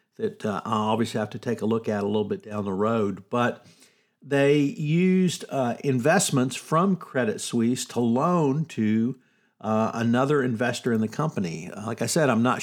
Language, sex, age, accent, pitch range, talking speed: English, male, 50-69, American, 115-140 Hz, 180 wpm